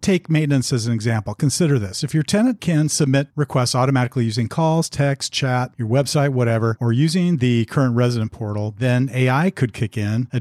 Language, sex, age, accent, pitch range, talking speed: English, male, 40-59, American, 115-145 Hz, 190 wpm